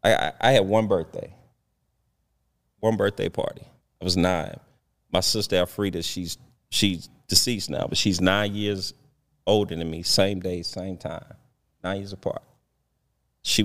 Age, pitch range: 30-49, 90-110 Hz